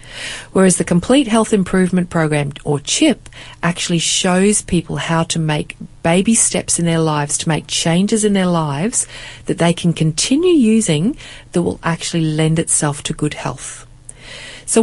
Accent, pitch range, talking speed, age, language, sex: Australian, 155-195 Hz, 160 wpm, 40-59, English, female